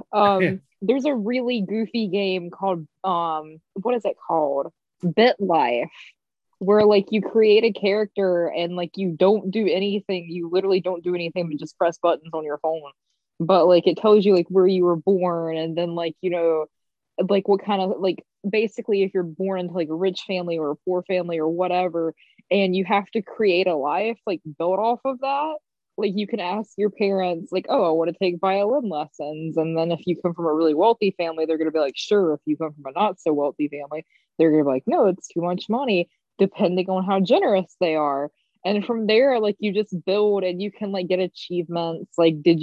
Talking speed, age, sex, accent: 215 wpm, 20-39, female, American